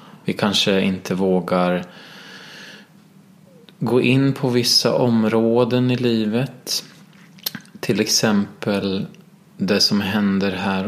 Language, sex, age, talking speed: Swedish, male, 20-39, 95 wpm